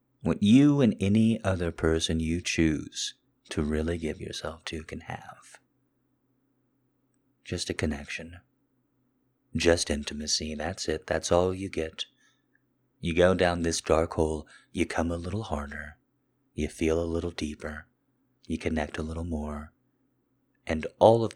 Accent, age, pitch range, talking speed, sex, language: American, 30-49, 80-130 Hz, 140 wpm, male, English